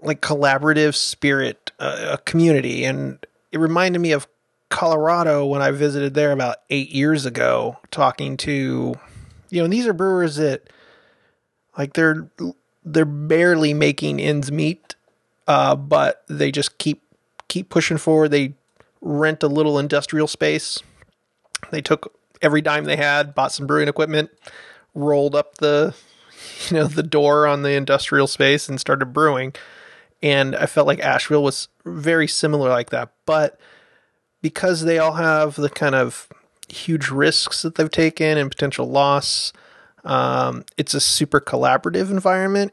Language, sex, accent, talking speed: English, male, American, 145 wpm